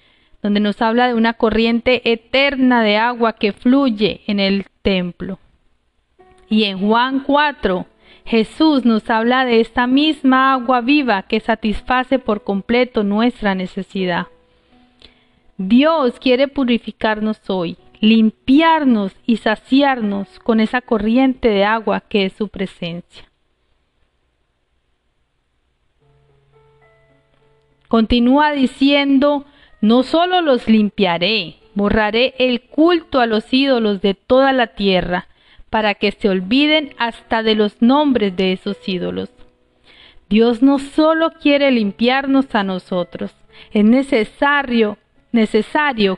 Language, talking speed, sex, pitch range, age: Spanish, 110 wpm, female, 200-260 Hz, 40-59